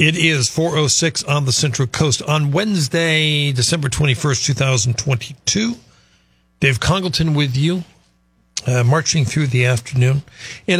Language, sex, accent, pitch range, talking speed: English, male, American, 125-160 Hz, 120 wpm